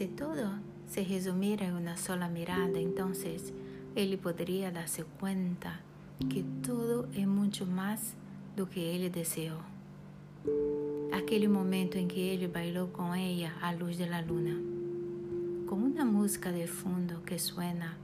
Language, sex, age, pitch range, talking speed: Spanish, female, 60-79, 155-190 Hz, 140 wpm